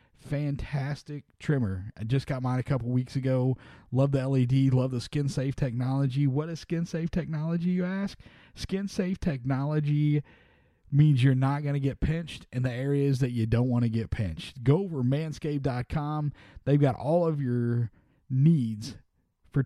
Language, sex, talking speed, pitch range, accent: English, male, 170 wpm, 125-155 Hz, American